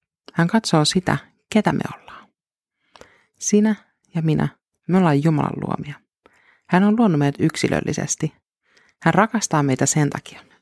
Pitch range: 145-185 Hz